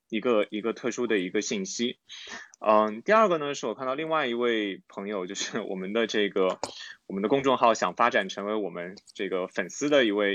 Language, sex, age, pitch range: Chinese, male, 20-39, 100-125 Hz